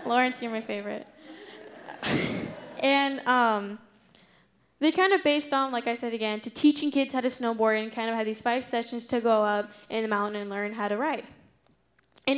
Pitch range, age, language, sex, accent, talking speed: 205-245 Hz, 10-29, English, female, American, 195 wpm